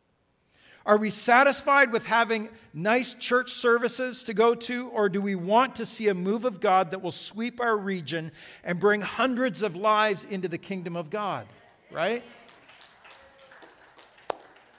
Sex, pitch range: male, 185-235 Hz